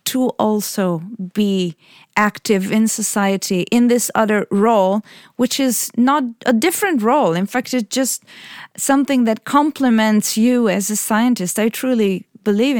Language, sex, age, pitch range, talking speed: English, female, 30-49, 205-255 Hz, 140 wpm